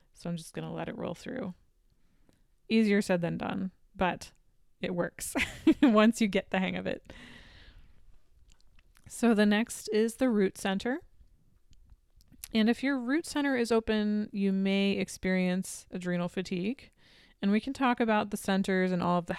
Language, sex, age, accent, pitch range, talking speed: English, female, 20-39, American, 180-220 Hz, 160 wpm